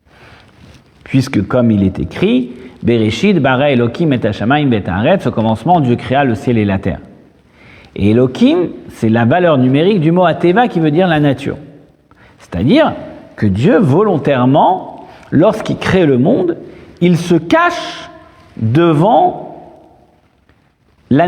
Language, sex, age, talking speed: French, male, 50-69, 125 wpm